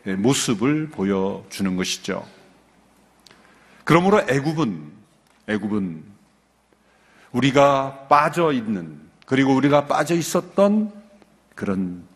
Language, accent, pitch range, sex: Korean, native, 125-170 Hz, male